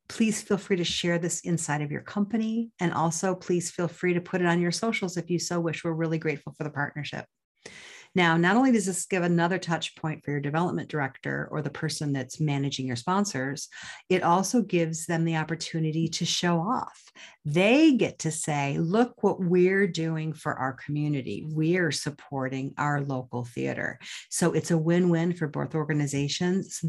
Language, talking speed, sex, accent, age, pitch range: English, 185 wpm, female, American, 50-69, 150-190 Hz